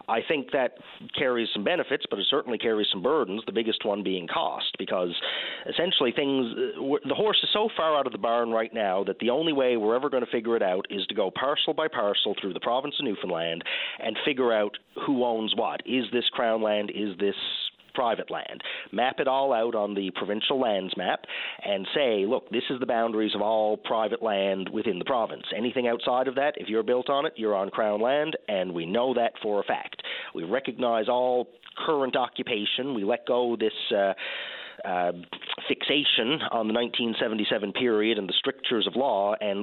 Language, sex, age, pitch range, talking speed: English, male, 40-59, 105-125 Hz, 200 wpm